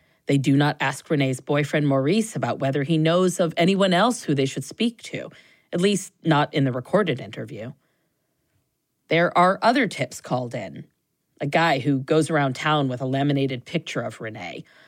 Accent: American